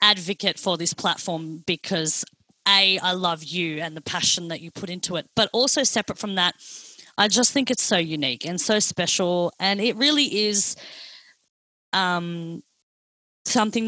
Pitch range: 175-210 Hz